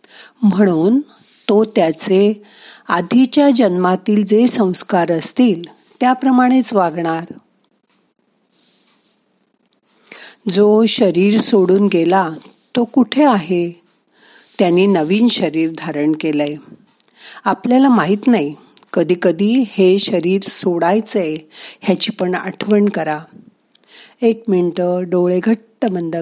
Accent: native